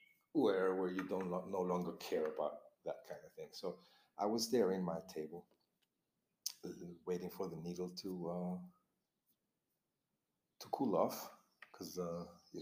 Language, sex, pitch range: English, male, 85-95 Hz